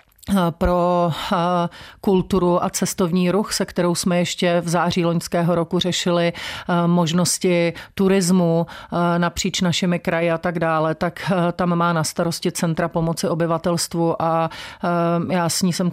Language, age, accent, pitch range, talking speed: Czech, 40-59, native, 165-175 Hz, 130 wpm